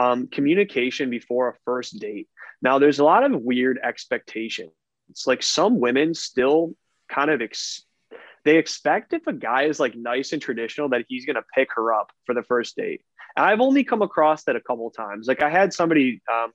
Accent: American